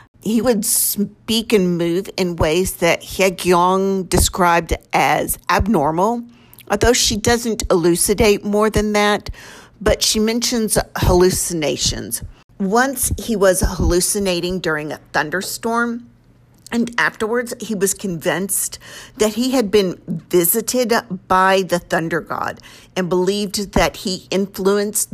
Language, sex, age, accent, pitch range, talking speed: English, female, 50-69, American, 175-210 Hz, 120 wpm